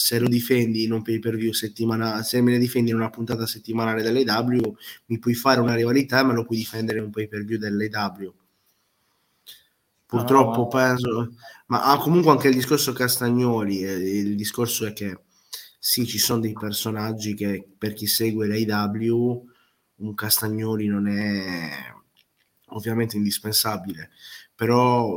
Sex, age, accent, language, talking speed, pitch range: male, 20-39, native, Italian, 150 wpm, 105-120 Hz